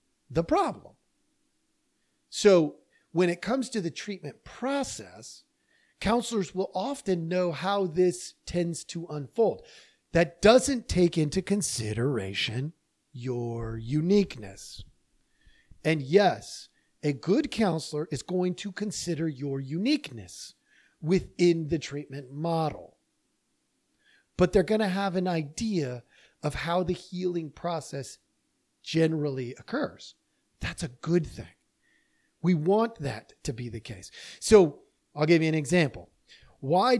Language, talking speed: English, 120 wpm